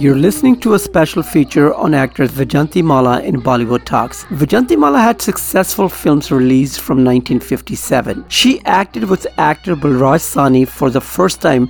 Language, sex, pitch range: English, male, 140-180 Hz